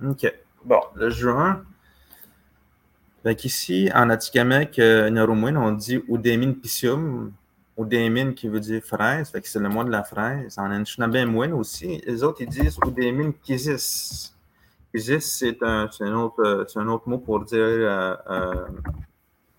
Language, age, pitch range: French, 30-49, 105-130 Hz